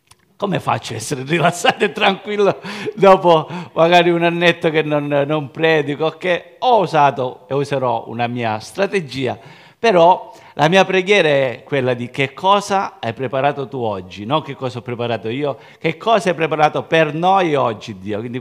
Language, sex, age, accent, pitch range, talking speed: Italian, male, 40-59, native, 125-180 Hz, 165 wpm